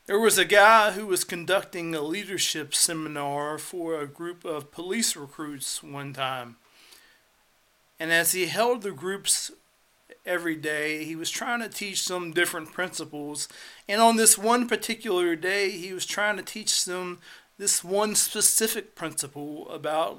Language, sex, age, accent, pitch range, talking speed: English, male, 40-59, American, 150-190 Hz, 150 wpm